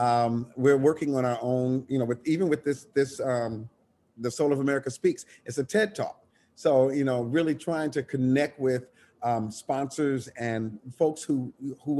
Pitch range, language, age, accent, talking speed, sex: 120-145 Hz, English, 50-69, American, 185 wpm, male